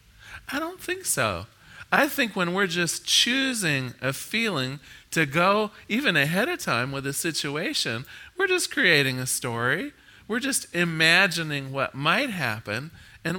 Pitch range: 140-205 Hz